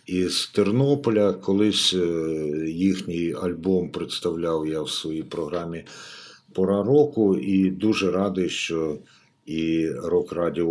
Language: Ukrainian